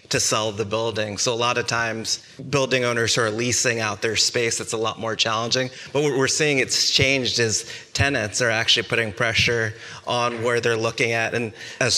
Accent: American